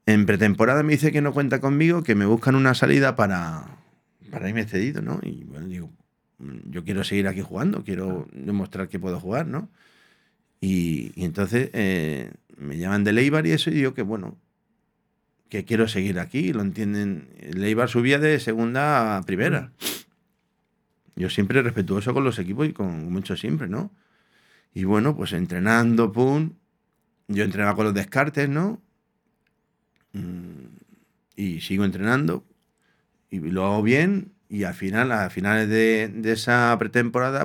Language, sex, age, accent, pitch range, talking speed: Spanish, male, 40-59, Spanish, 100-135 Hz, 155 wpm